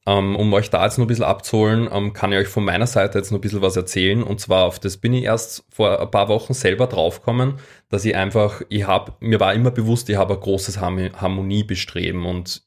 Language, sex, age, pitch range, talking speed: German, male, 20-39, 95-110 Hz, 230 wpm